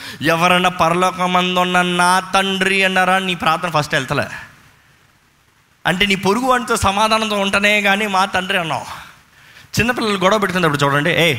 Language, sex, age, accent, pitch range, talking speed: Telugu, male, 20-39, native, 150-205 Hz, 125 wpm